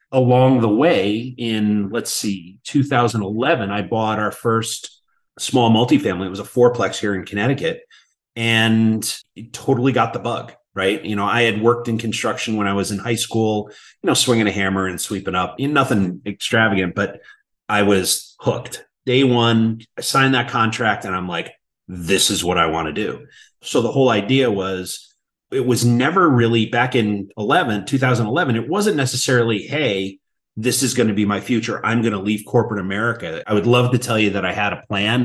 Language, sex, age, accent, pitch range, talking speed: English, male, 30-49, American, 100-120 Hz, 190 wpm